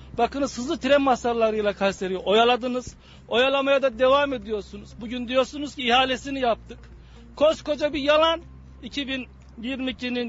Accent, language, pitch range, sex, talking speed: native, Turkish, 225-285 Hz, male, 110 wpm